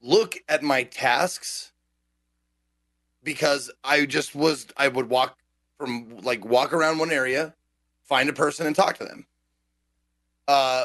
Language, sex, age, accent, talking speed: English, male, 30-49, American, 140 wpm